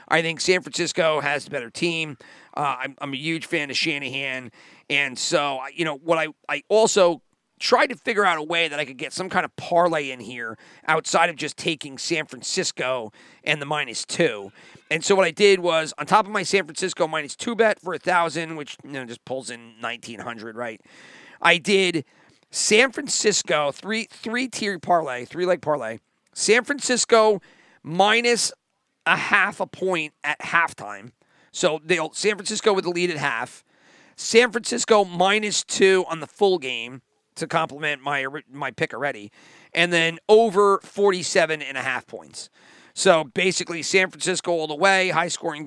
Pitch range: 140-185 Hz